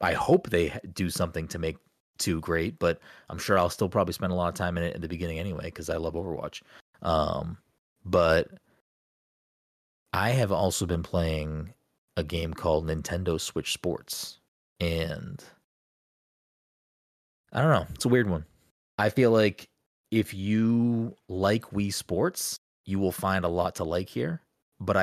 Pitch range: 80-95 Hz